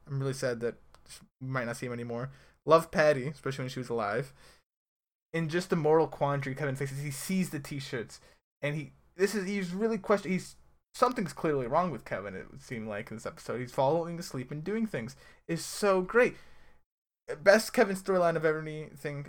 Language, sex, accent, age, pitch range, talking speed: English, male, American, 20-39, 125-155 Hz, 195 wpm